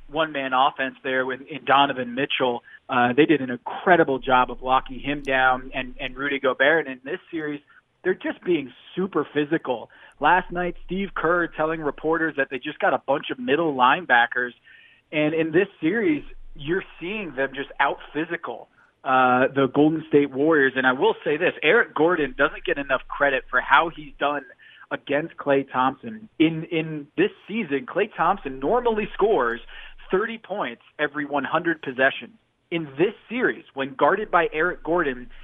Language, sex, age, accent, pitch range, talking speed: English, male, 20-39, American, 135-165 Hz, 170 wpm